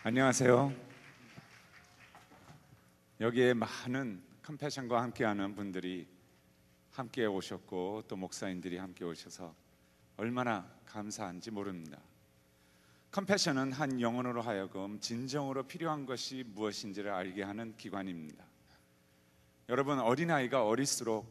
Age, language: 40-59, Korean